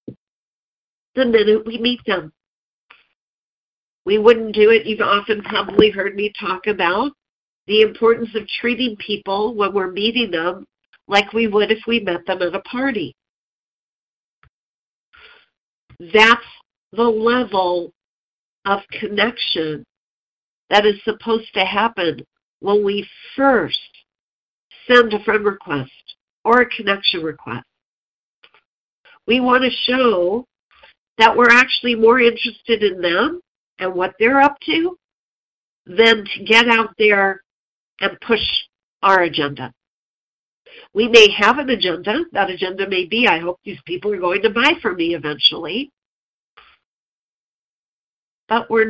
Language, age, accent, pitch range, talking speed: English, 50-69, American, 195-235 Hz, 125 wpm